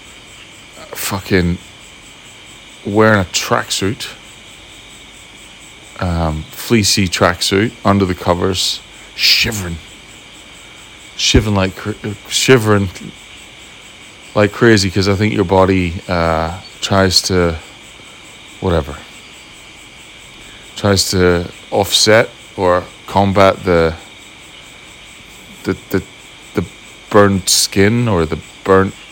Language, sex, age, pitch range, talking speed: English, male, 30-49, 85-100 Hz, 80 wpm